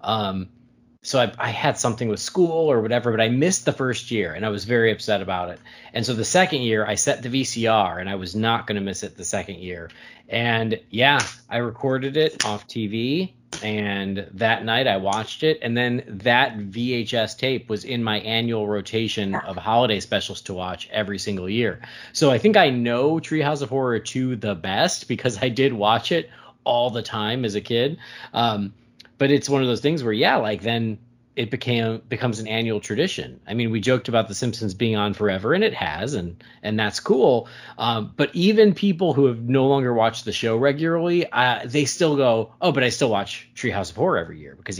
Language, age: English, 30-49